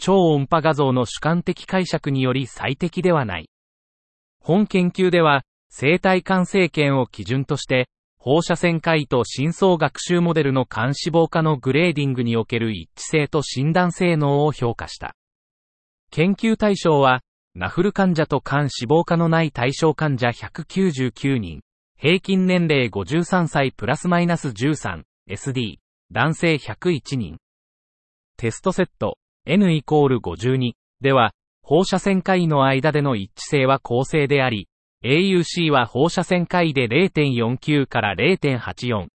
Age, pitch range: 40-59, 125-170 Hz